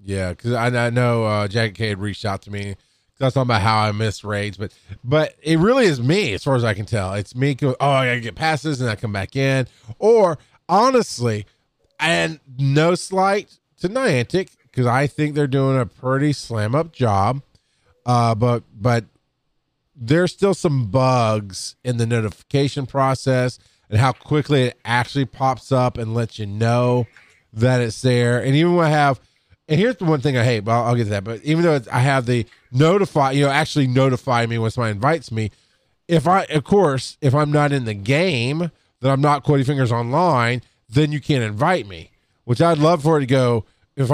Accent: American